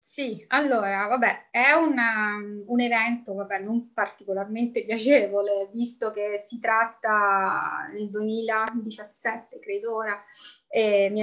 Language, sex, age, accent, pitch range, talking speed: Italian, female, 20-39, native, 200-240 Hz, 105 wpm